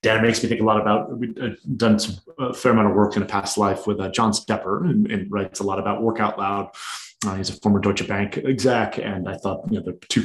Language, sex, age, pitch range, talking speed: English, male, 30-49, 105-125 Hz, 265 wpm